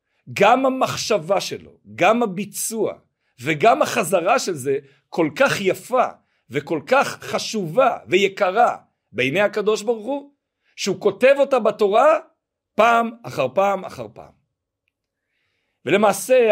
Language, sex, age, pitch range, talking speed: Hebrew, male, 50-69, 155-240 Hz, 110 wpm